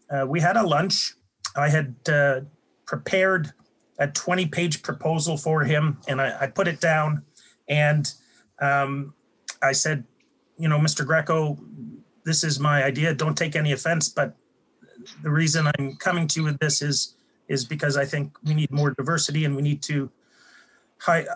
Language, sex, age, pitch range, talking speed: English, male, 30-49, 140-160 Hz, 165 wpm